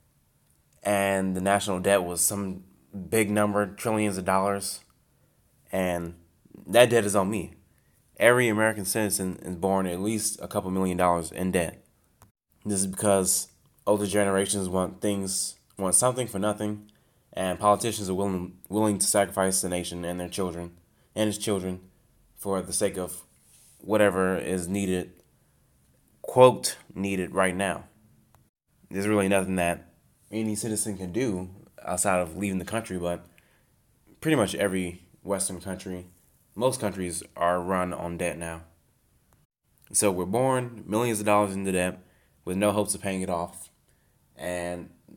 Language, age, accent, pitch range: English, 20-39, American, 90-100 Hz